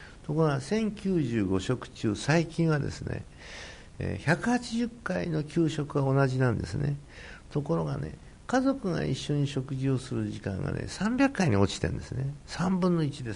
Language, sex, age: Japanese, male, 60-79